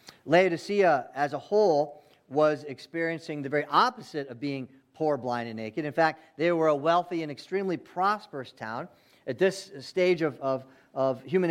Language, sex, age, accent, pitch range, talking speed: English, male, 40-59, American, 135-170 Hz, 160 wpm